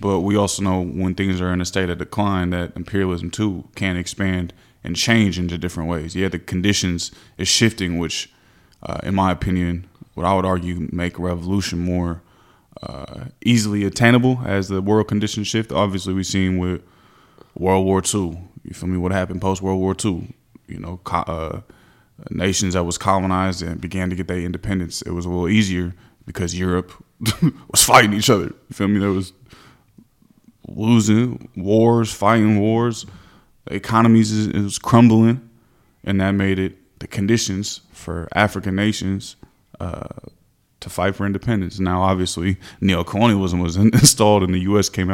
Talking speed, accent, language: 160 wpm, American, English